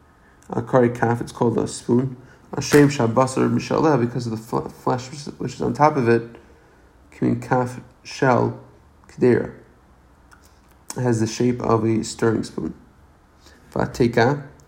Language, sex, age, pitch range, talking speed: English, male, 30-49, 110-130 Hz, 135 wpm